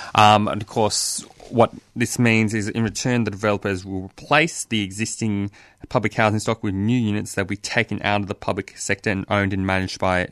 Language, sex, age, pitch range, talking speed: English, male, 20-39, 95-110 Hz, 210 wpm